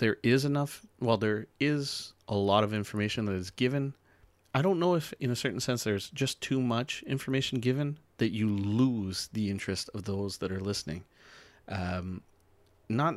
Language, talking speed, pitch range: English, 180 wpm, 100-125 Hz